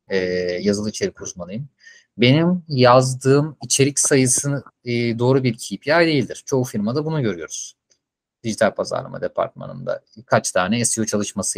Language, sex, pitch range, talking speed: Turkish, male, 105-140 Hz, 125 wpm